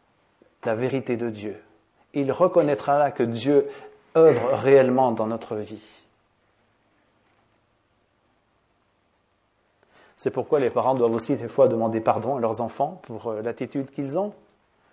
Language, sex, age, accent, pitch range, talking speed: English, male, 30-49, French, 115-150 Hz, 120 wpm